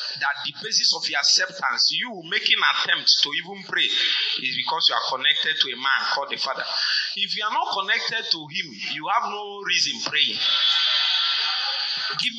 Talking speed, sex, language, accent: 180 wpm, male, English, Nigerian